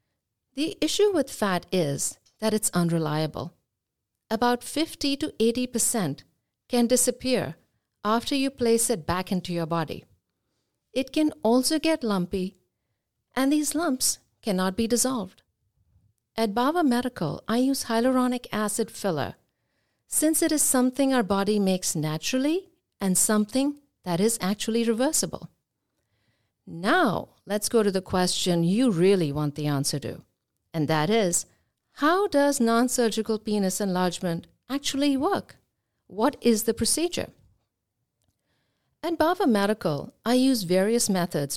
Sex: female